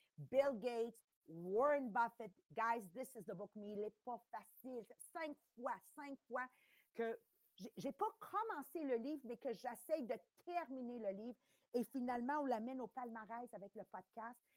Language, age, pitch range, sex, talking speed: English, 50-69, 225-300 Hz, female, 165 wpm